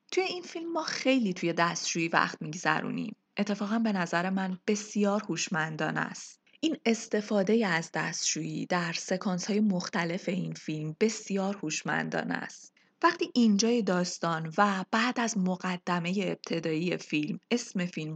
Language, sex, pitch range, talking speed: Persian, female, 175-240 Hz, 125 wpm